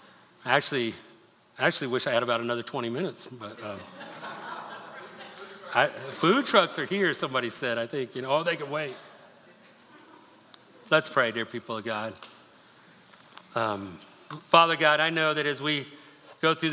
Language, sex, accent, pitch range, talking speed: English, male, American, 115-150 Hz, 155 wpm